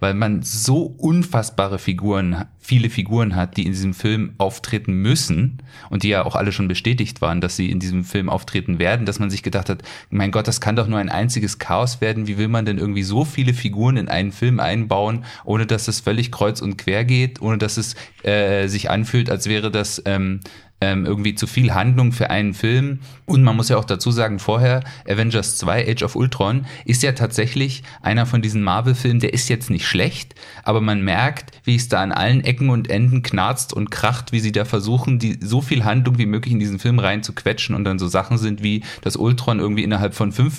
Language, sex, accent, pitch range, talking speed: German, male, German, 100-125 Hz, 220 wpm